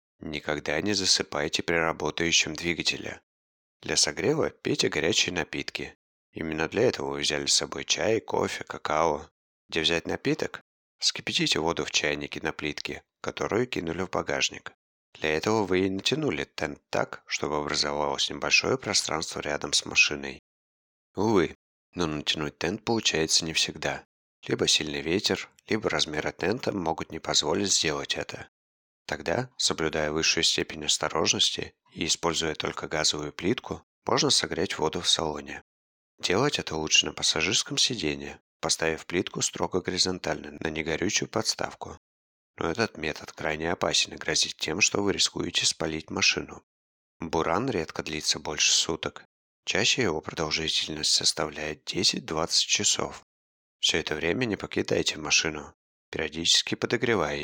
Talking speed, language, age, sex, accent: 130 wpm, Russian, 30-49, male, native